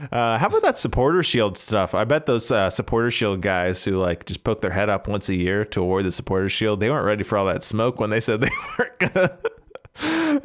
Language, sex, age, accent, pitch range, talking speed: English, male, 20-39, American, 100-135 Hz, 240 wpm